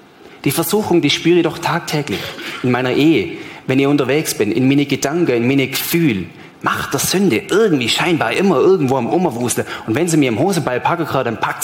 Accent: German